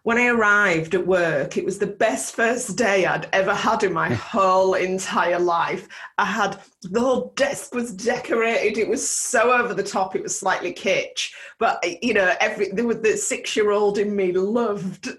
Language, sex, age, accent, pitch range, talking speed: English, female, 30-49, British, 190-235 Hz, 180 wpm